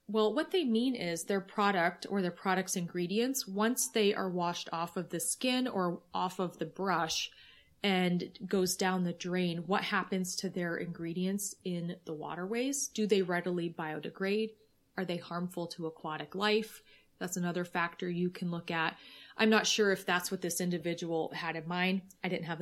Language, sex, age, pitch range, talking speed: English, female, 30-49, 170-200 Hz, 180 wpm